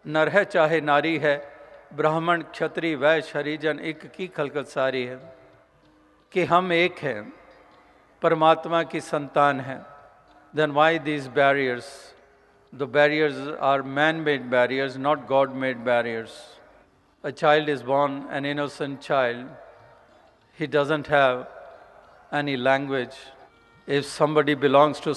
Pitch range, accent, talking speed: 135-150 Hz, native, 115 wpm